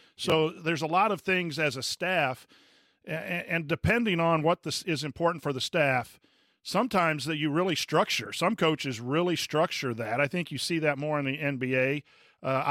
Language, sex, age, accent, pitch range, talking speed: English, male, 50-69, American, 140-165 Hz, 185 wpm